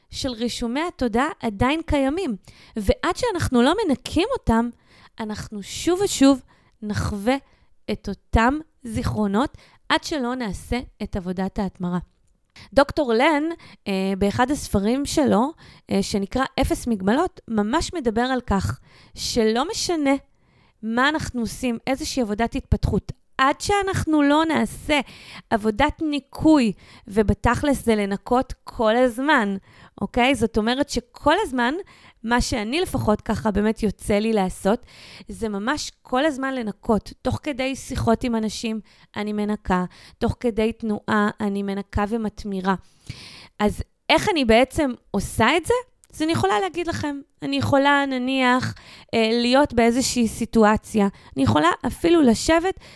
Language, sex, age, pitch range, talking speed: Hebrew, female, 20-39, 215-285 Hz, 120 wpm